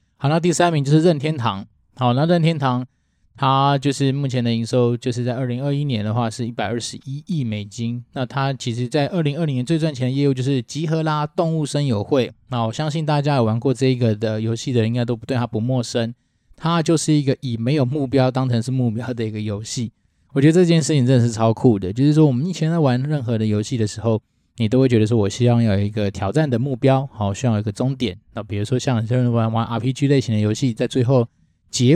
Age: 20-39